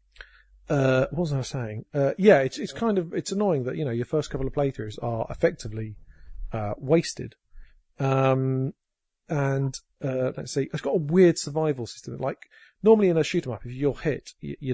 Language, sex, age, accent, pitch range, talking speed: English, male, 40-59, British, 120-150 Hz, 185 wpm